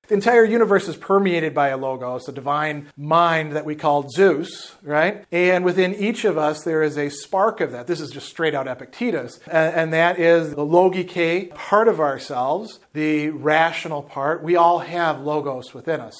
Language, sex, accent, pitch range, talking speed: English, male, American, 150-180 Hz, 180 wpm